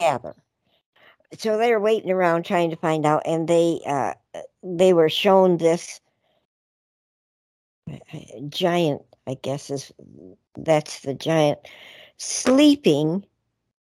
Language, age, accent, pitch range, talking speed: English, 60-79, American, 150-185 Hz, 105 wpm